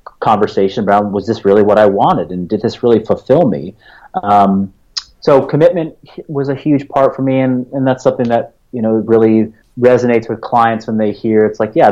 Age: 30-49